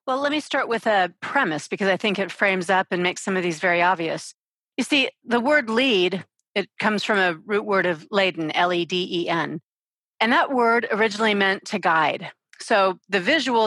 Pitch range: 180-230 Hz